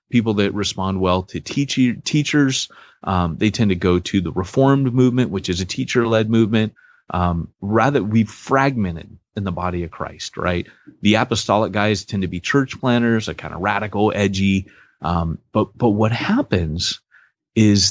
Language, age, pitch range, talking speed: English, 30-49, 95-135 Hz, 170 wpm